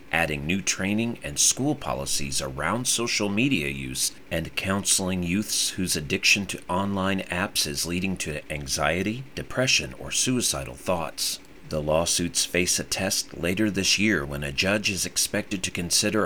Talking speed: 150 wpm